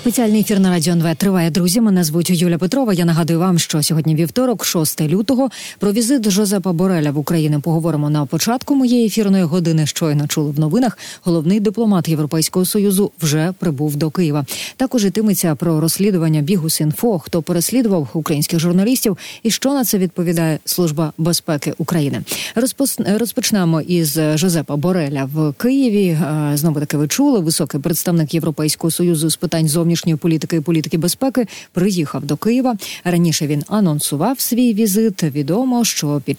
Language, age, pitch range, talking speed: Ukrainian, 30-49, 155-200 Hz, 155 wpm